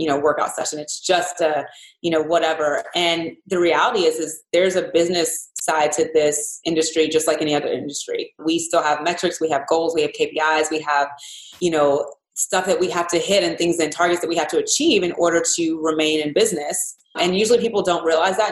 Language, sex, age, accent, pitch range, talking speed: English, female, 20-39, American, 155-185 Hz, 220 wpm